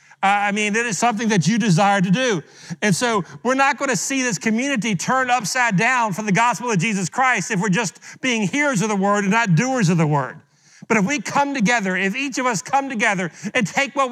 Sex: male